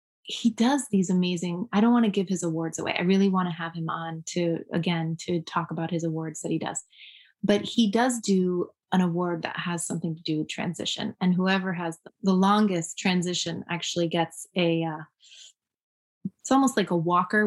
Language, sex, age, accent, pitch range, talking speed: English, female, 20-39, American, 170-200 Hz, 200 wpm